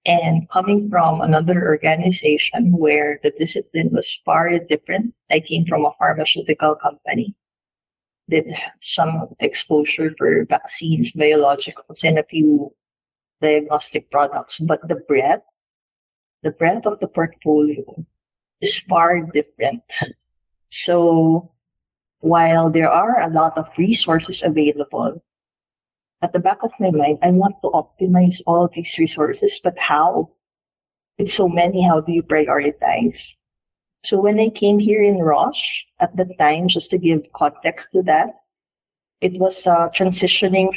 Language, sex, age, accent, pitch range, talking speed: English, female, 50-69, Filipino, 150-185 Hz, 130 wpm